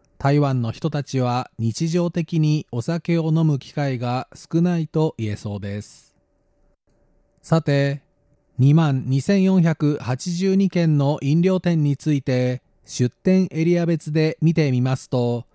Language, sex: German, male